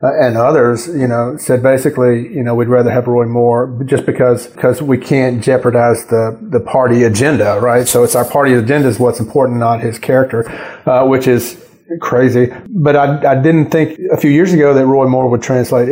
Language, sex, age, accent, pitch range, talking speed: English, male, 30-49, American, 120-140 Hz, 205 wpm